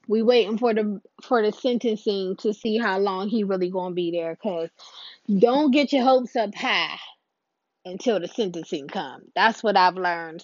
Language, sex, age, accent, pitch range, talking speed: English, female, 20-39, American, 175-225 Hz, 185 wpm